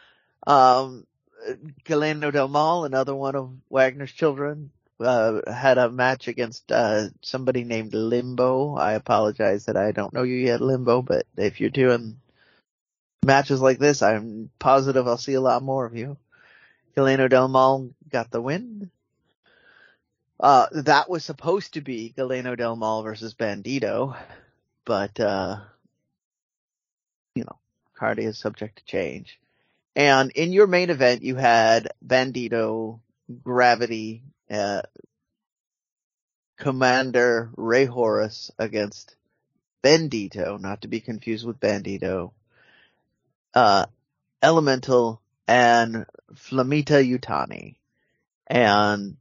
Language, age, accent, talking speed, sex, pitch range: English, 30-49, American, 115 wpm, male, 110-135 Hz